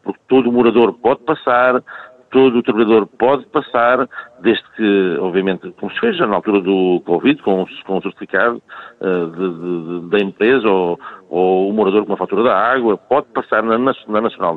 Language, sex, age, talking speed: Portuguese, male, 50-69, 175 wpm